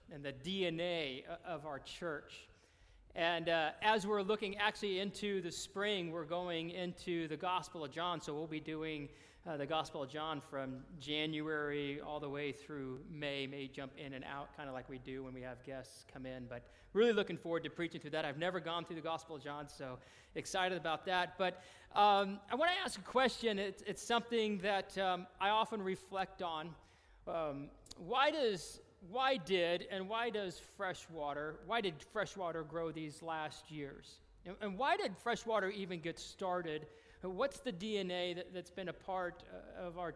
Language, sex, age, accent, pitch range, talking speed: English, male, 40-59, American, 150-195 Hz, 190 wpm